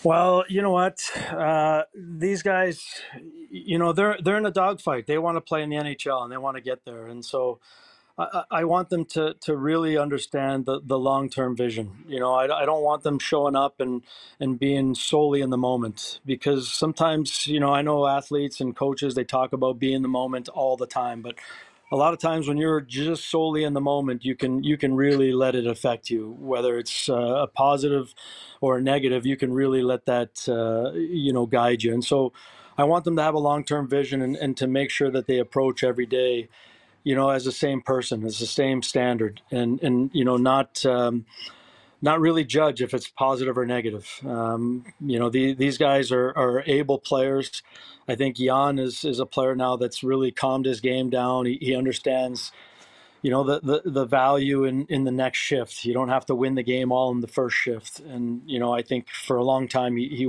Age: 30-49